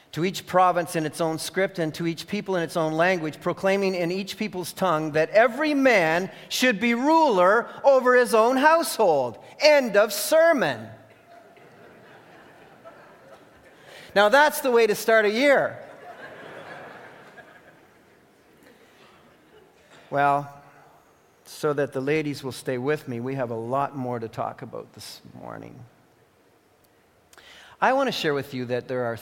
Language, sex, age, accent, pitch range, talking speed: English, male, 40-59, American, 130-190 Hz, 140 wpm